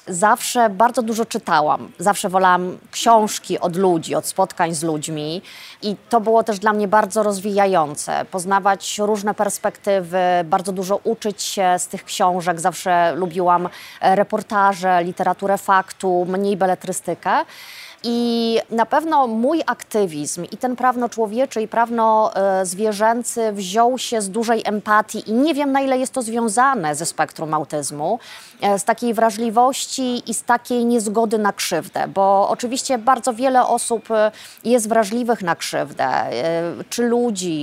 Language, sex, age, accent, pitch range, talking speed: Polish, female, 20-39, native, 190-235 Hz, 135 wpm